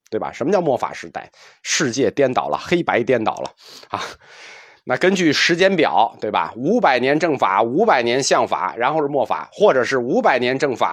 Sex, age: male, 20-39